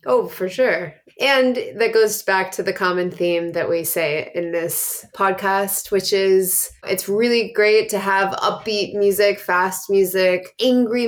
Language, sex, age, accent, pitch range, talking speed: English, female, 20-39, American, 175-225 Hz, 155 wpm